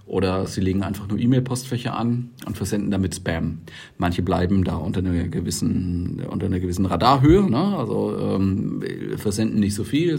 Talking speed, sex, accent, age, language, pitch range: 165 wpm, male, German, 40-59, German, 100-125 Hz